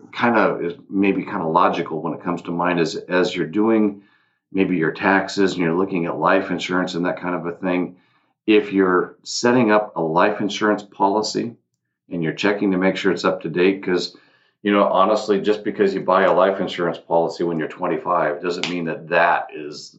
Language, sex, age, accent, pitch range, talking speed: English, male, 50-69, American, 85-95 Hz, 205 wpm